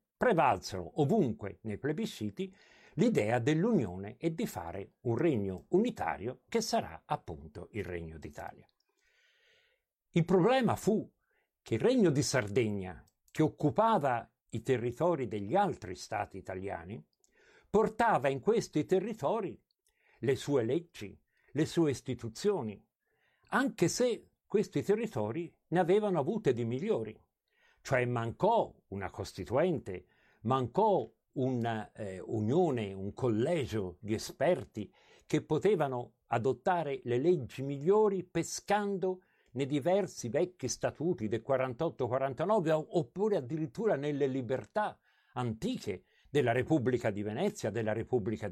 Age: 60-79